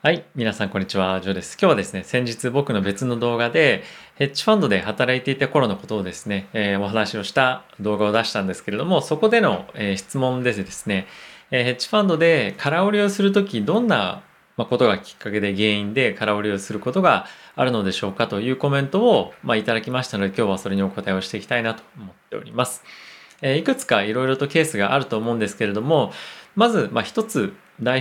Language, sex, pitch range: Japanese, male, 105-150 Hz